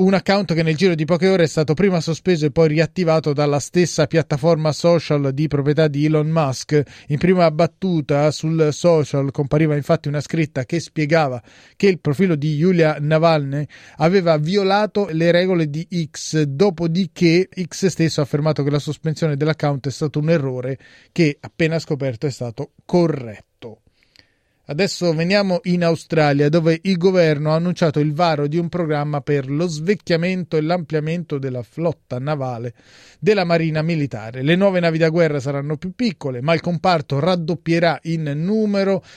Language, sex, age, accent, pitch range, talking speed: Italian, male, 30-49, native, 150-175 Hz, 160 wpm